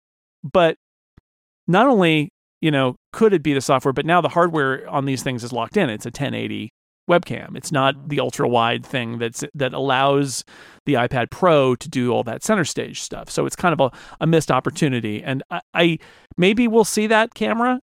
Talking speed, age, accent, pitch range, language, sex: 200 wpm, 40-59, American, 135-180 Hz, English, male